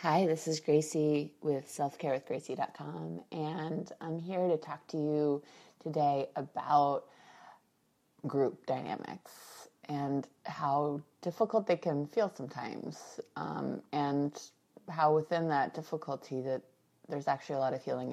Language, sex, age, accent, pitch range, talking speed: English, female, 20-39, American, 125-155 Hz, 125 wpm